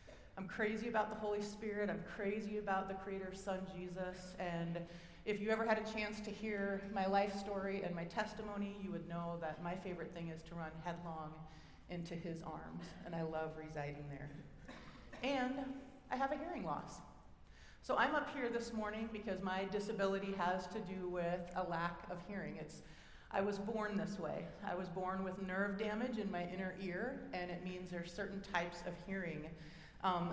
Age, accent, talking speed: 30-49, American, 190 wpm